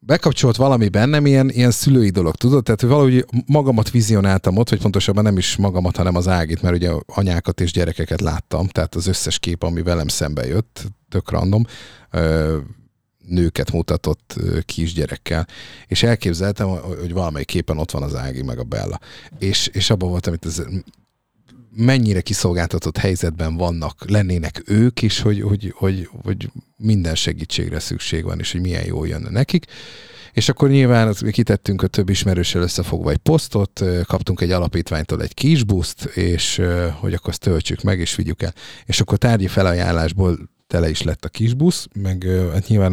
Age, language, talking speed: 50-69, Hungarian, 160 wpm